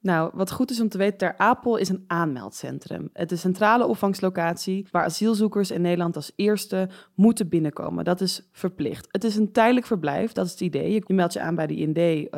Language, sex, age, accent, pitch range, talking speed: Dutch, female, 20-39, Dutch, 165-215 Hz, 220 wpm